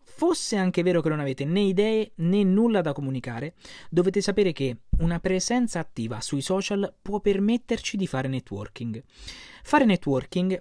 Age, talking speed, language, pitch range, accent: 30-49, 155 wpm, Italian, 140-205 Hz, native